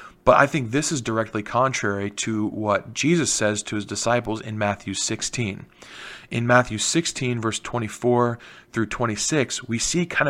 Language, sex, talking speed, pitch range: English, male, 155 wpm, 110-135 Hz